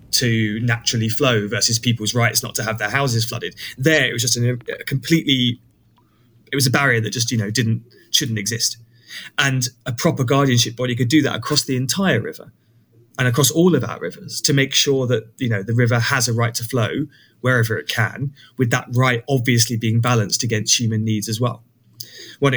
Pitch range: 120-145 Hz